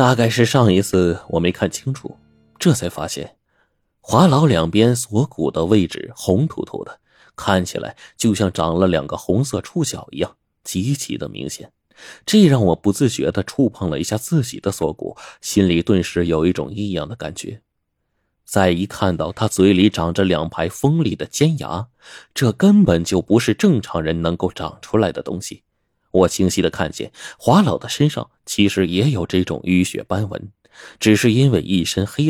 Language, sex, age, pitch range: Chinese, male, 30-49, 85-115 Hz